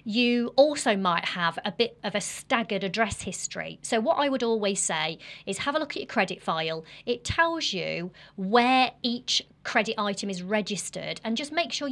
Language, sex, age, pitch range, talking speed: English, female, 30-49, 180-230 Hz, 190 wpm